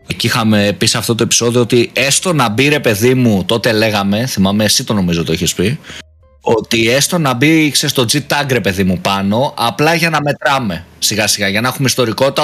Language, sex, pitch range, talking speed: Greek, male, 115-165 Hz, 205 wpm